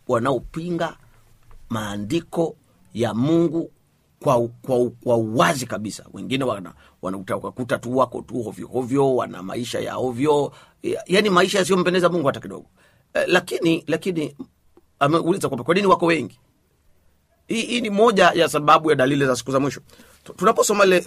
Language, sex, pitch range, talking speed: Swahili, male, 125-170 Hz, 135 wpm